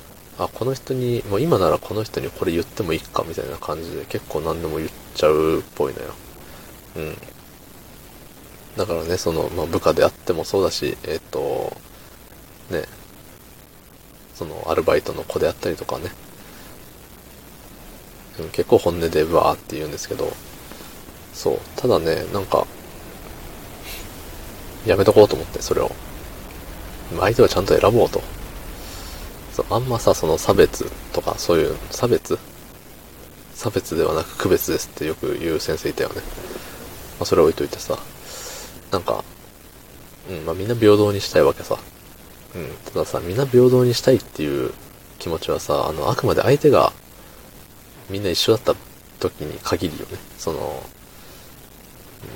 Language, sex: Japanese, male